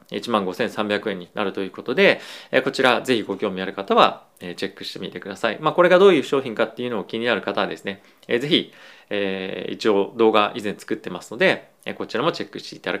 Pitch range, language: 100-145 Hz, Japanese